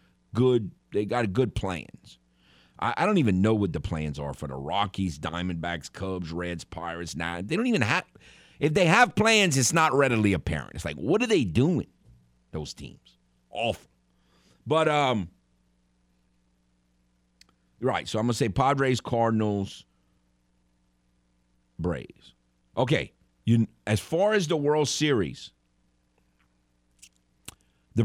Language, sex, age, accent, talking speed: English, male, 50-69, American, 135 wpm